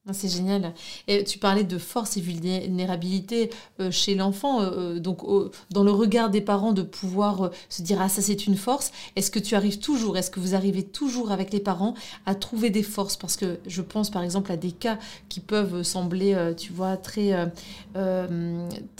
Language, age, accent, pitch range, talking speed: French, 30-49, French, 180-205 Hz, 200 wpm